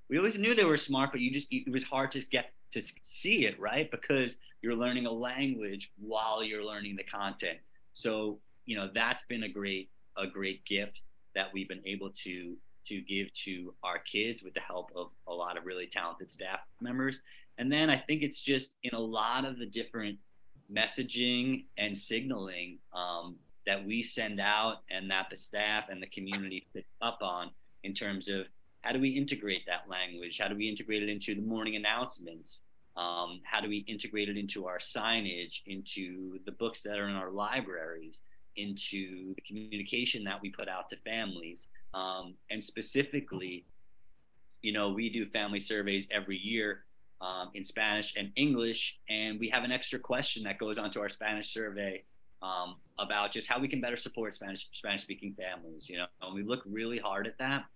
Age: 30-49